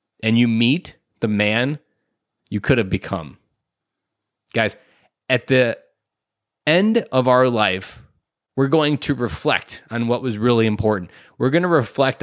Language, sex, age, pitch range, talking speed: English, male, 20-39, 110-135 Hz, 140 wpm